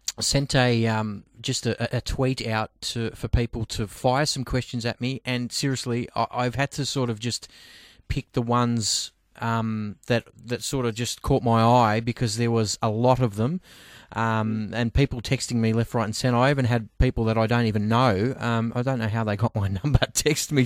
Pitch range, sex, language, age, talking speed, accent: 115-135 Hz, male, English, 20-39, 215 wpm, Australian